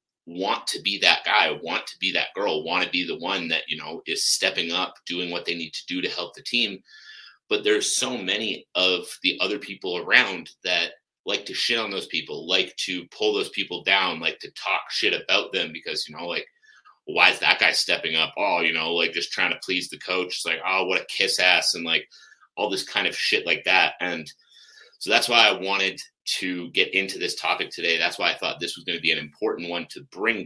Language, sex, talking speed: English, male, 240 wpm